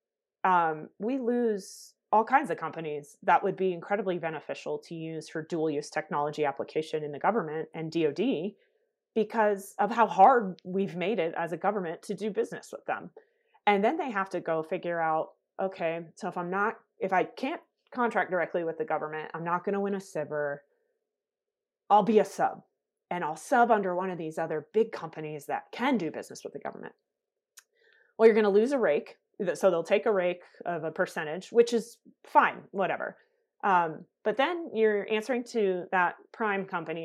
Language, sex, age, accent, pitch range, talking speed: English, female, 30-49, American, 165-235 Hz, 190 wpm